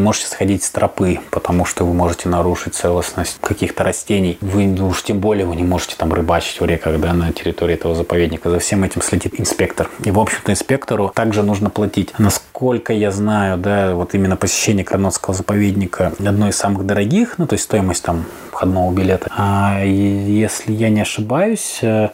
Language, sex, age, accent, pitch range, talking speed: Russian, male, 20-39, native, 95-115 Hz, 180 wpm